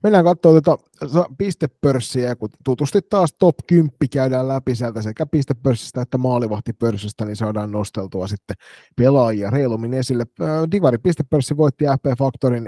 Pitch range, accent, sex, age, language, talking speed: 115-135 Hz, native, male, 30-49, Finnish, 130 wpm